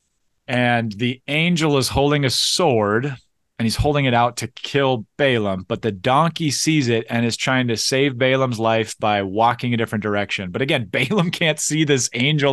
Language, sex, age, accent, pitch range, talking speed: English, male, 30-49, American, 110-135 Hz, 185 wpm